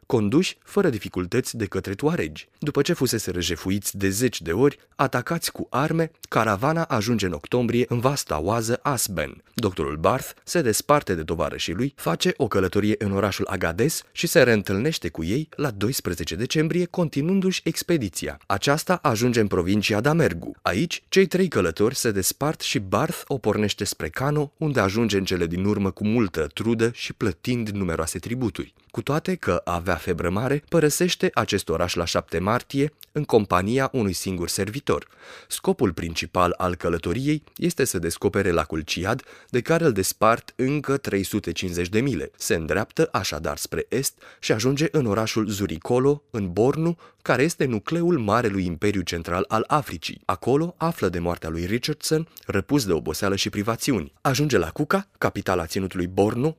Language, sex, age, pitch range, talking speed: Romanian, male, 30-49, 95-145 Hz, 160 wpm